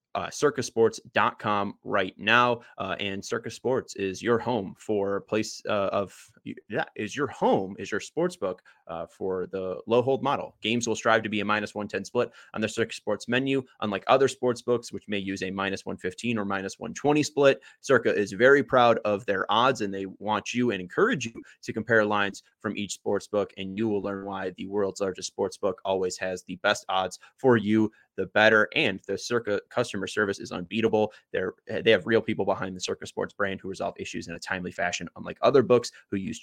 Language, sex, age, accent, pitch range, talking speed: English, male, 20-39, American, 95-120 Hz, 210 wpm